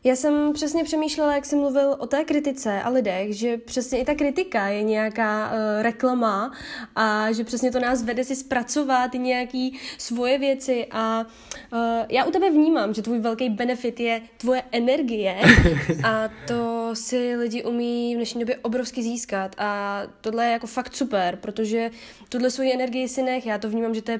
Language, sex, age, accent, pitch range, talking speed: Czech, female, 10-29, native, 225-270 Hz, 180 wpm